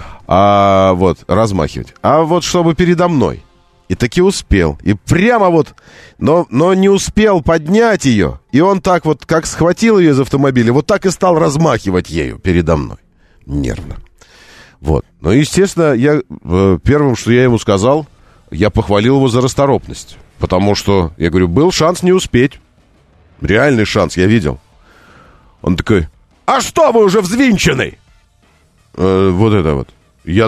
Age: 40-59